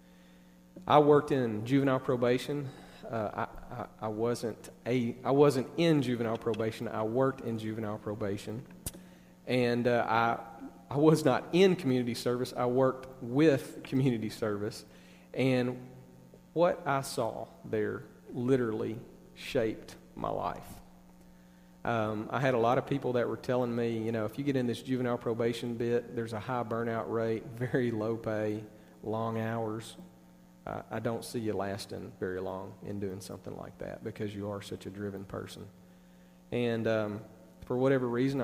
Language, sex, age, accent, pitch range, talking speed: English, male, 40-59, American, 95-120 Hz, 155 wpm